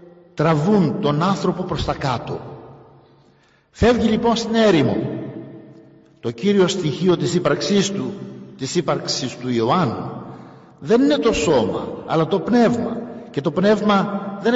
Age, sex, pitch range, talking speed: 50-69, male, 130-210 Hz, 130 wpm